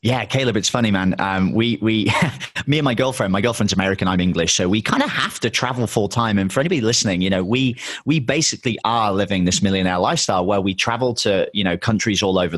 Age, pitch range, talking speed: 30-49, 100-140 Hz, 235 wpm